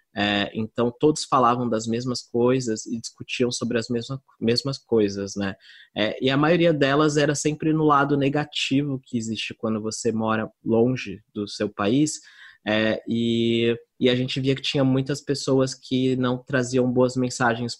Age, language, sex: 20-39, Portuguese, male